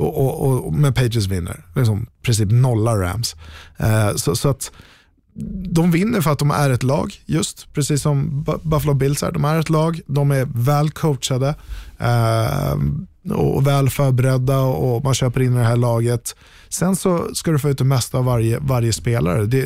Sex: male